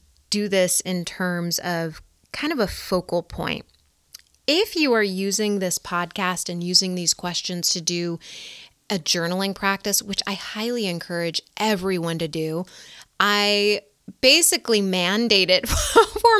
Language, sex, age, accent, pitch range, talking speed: English, female, 20-39, American, 185-245 Hz, 135 wpm